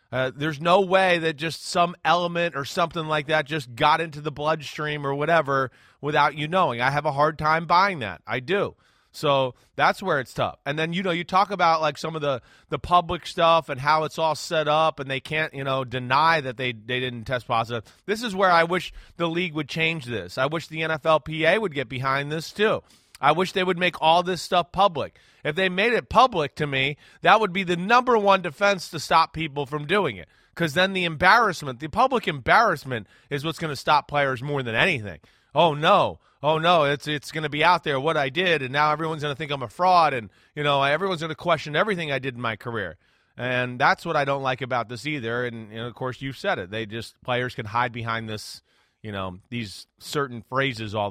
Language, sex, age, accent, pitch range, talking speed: English, male, 30-49, American, 130-170 Hz, 230 wpm